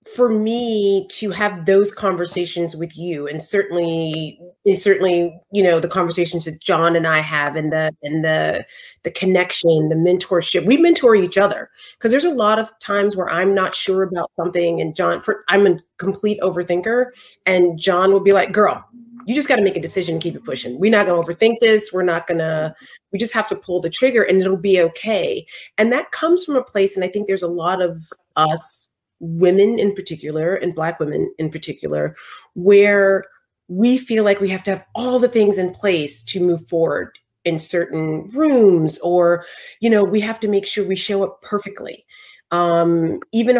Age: 30-49